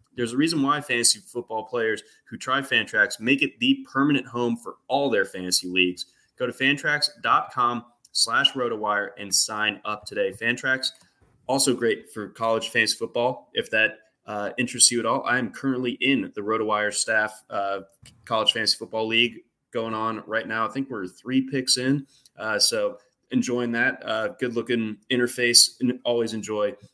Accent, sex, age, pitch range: American, male, 20-39, 110-135 Hz